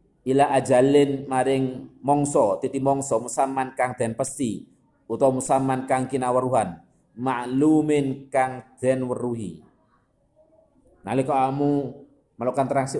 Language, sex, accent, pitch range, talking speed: Indonesian, male, native, 110-135 Hz, 105 wpm